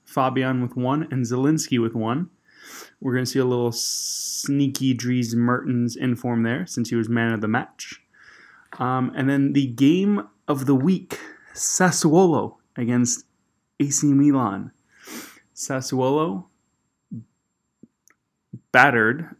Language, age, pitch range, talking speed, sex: English, 20-39, 125-150 Hz, 120 wpm, male